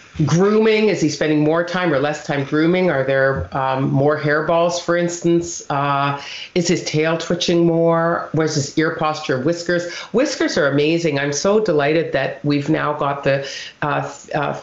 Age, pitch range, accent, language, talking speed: 50-69, 140-170 Hz, American, English, 160 wpm